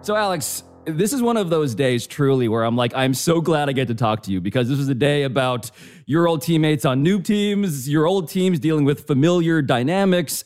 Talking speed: 230 wpm